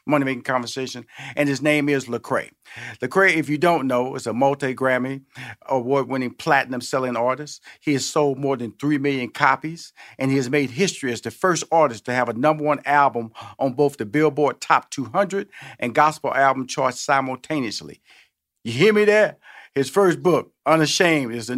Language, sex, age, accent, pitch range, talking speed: English, male, 50-69, American, 125-150 Hz, 170 wpm